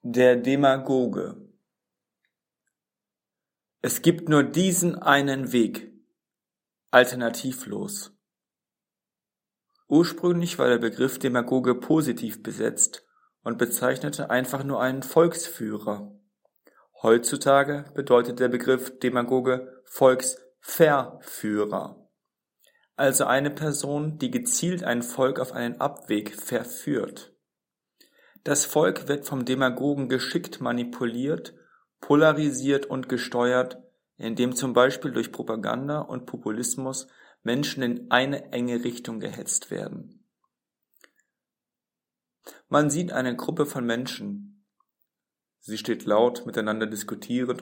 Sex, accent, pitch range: male, German, 120-145 Hz